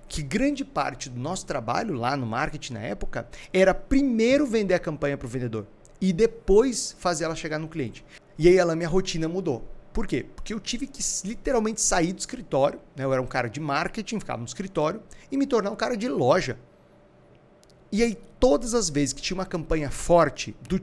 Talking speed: 200 wpm